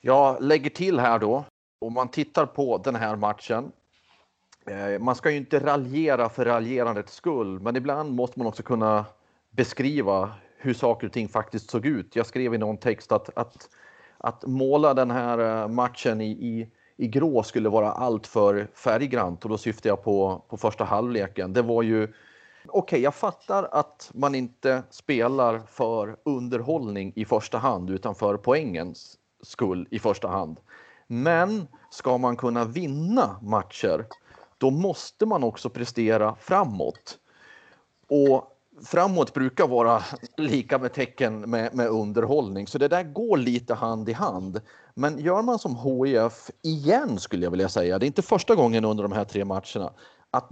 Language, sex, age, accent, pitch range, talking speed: Swedish, male, 30-49, native, 110-135 Hz, 165 wpm